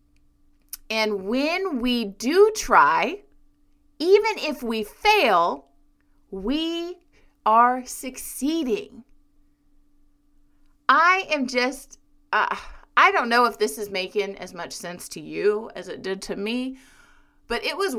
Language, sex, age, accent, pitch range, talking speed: English, female, 30-49, American, 195-275 Hz, 120 wpm